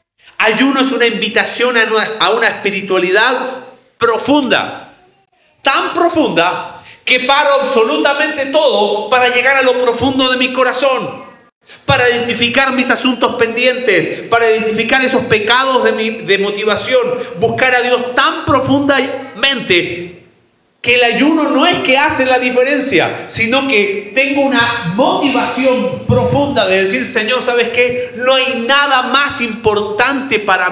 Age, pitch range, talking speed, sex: 40-59, 190-260 Hz, 130 wpm, male